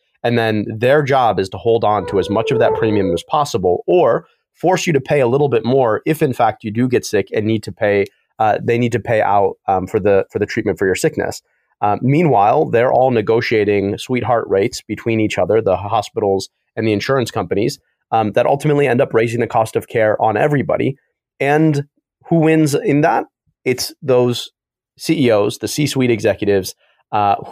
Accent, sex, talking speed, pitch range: American, male, 200 wpm, 105-125 Hz